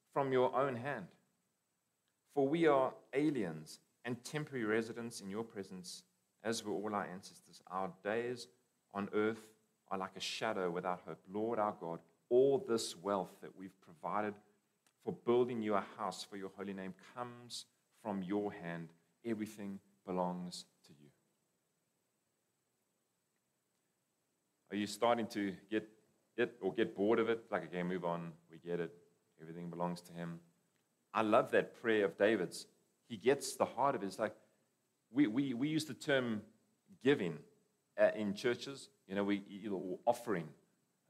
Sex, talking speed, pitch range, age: male, 155 wpm, 95-125 Hz, 30-49